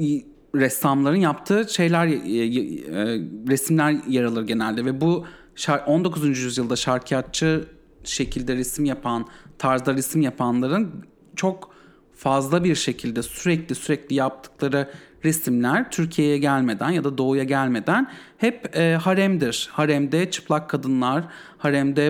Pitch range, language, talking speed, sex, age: 135-170 Hz, English, 105 wpm, male, 40-59